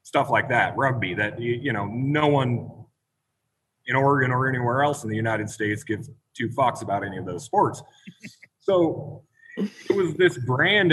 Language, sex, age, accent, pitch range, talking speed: English, male, 30-49, American, 120-150 Hz, 175 wpm